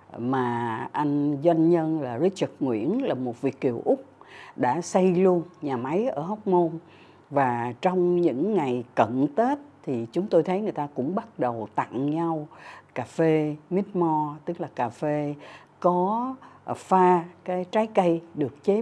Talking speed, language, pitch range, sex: 165 wpm, Vietnamese, 130-180 Hz, female